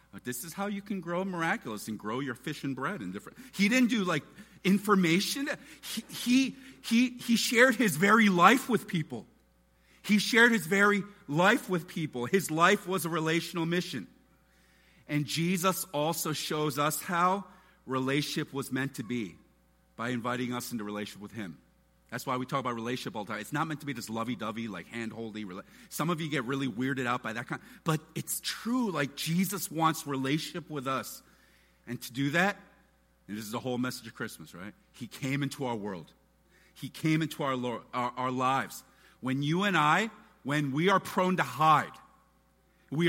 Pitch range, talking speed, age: 125-185 Hz, 190 wpm, 40-59